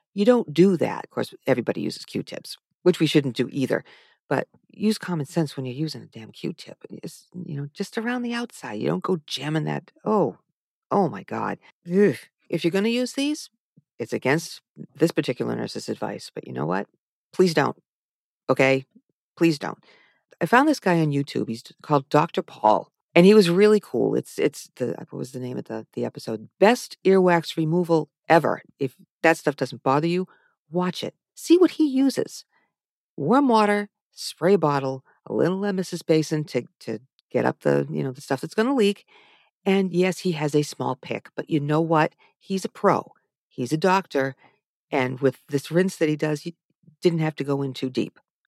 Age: 50-69